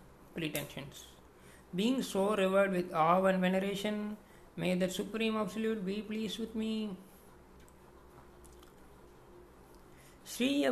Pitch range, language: 170-210 Hz, Tamil